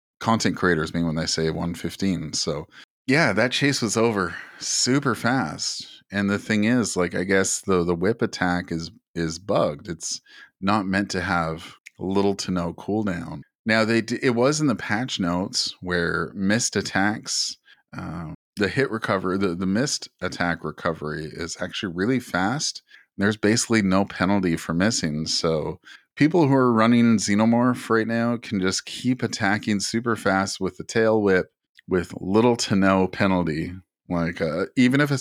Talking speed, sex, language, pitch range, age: 165 wpm, male, English, 90-110 Hz, 30-49